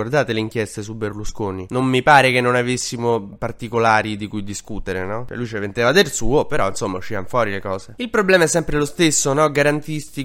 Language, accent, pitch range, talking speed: Italian, native, 110-135 Hz, 210 wpm